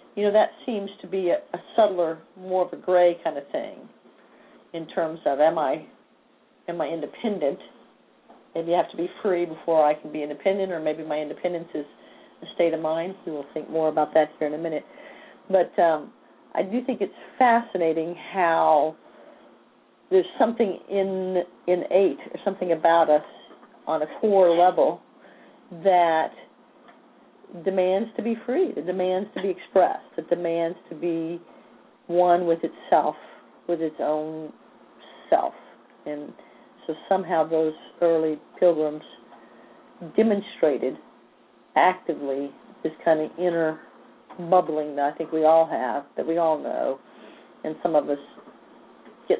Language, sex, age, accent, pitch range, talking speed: English, female, 50-69, American, 155-185 Hz, 150 wpm